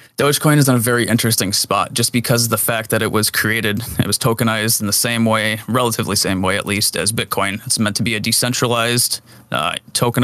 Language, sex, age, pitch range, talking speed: English, male, 20-39, 110-120 Hz, 225 wpm